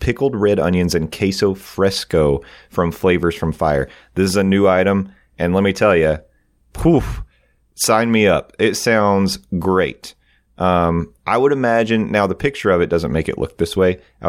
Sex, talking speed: male, 180 wpm